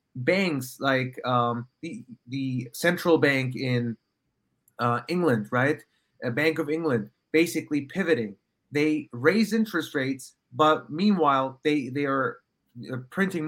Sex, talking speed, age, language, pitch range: male, 115 wpm, 30-49, English, 140-185 Hz